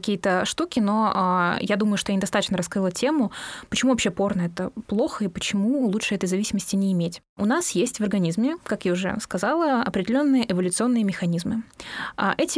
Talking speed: 170 wpm